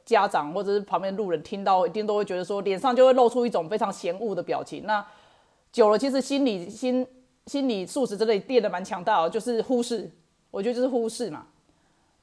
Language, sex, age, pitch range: Chinese, female, 30-49, 195-255 Hz